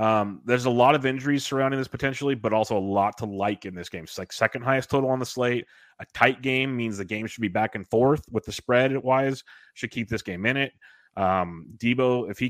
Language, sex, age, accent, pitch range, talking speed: English, male, 30-49, American, 105-125 Hz, 240 wpm